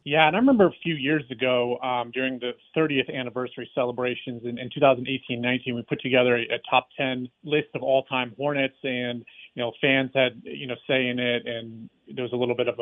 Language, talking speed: English, 210 wpm